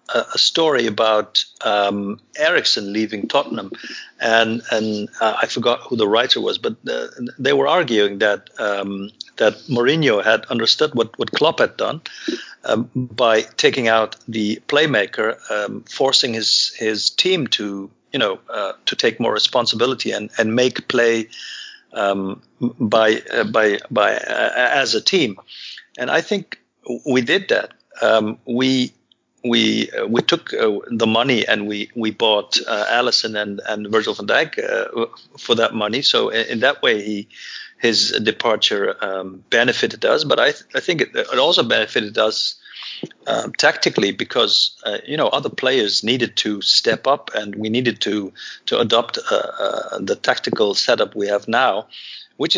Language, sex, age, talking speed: English, male, 50-69, 165 wpm